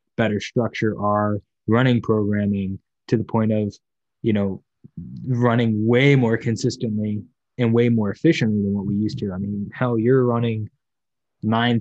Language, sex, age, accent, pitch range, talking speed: English, male, 20-39, American, 110-125 Hz, 150 wpm